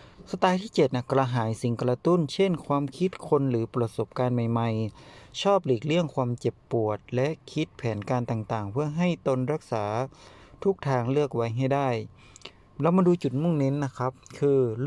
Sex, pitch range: male, 120-150 Hz